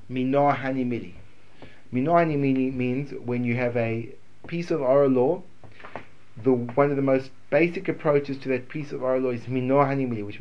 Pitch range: 125-170 Hz